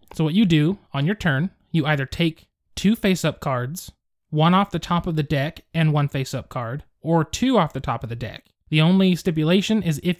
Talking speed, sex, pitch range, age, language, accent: 220 wpm, male, 140-180 Hz, 20-39, English, American